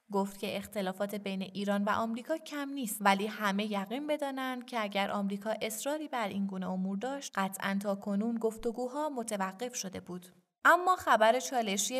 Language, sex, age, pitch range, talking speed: Persian, female, 20-39, 195-235 Hz, 155 wpm